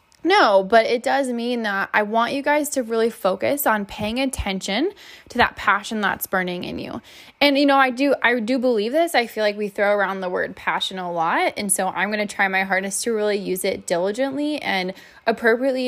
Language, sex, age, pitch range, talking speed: English, female, 20-39, 190-245 Hz, 220 wpm